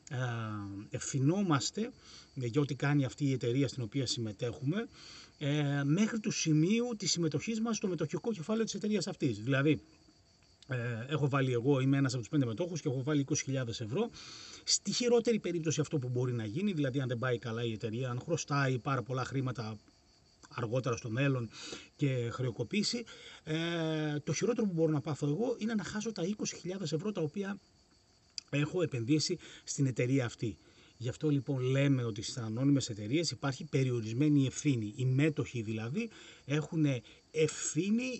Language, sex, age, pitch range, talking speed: Greek, male, 30-49, 120-160 Hz, 155 wpm